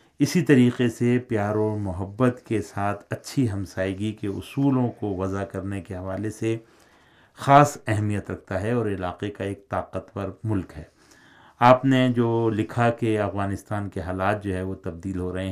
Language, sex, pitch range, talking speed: Urdu, male, 95-115 Hz, 165 wpm